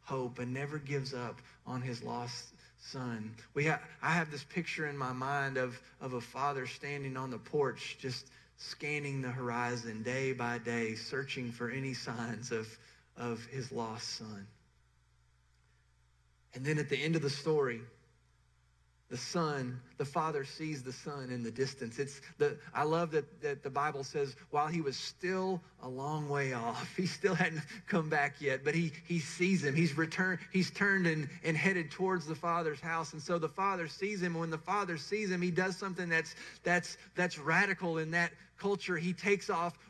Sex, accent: male, American